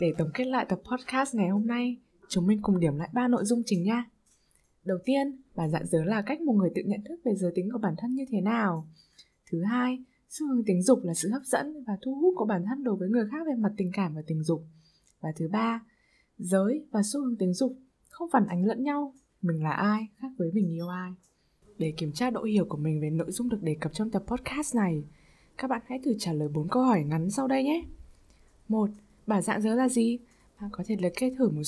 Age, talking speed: 10-29, 250 wpm